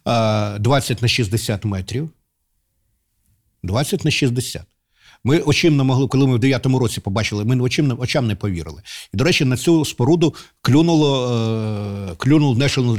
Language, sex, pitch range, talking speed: Ukrainian, male, 110-145 Hz, 140 wpm